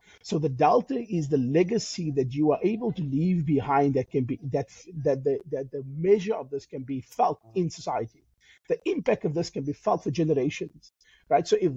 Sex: male